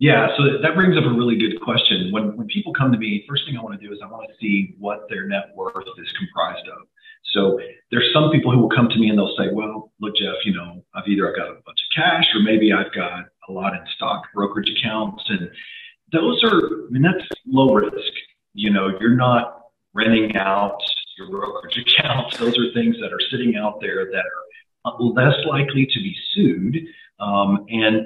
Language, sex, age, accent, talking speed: English, male, 40-59, American, 215 wpm